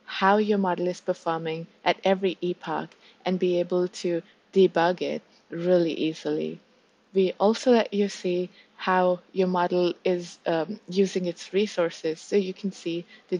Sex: female